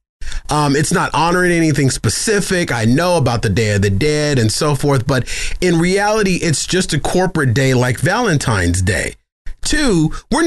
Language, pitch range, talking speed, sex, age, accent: English, 135-225 Hz, 170 wpm, male, 30-49, American